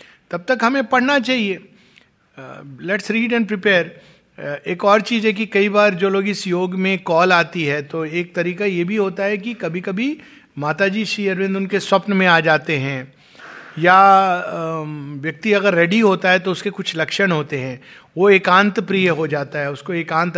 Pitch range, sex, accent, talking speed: 160-200 Hz, male, native, 190 wpm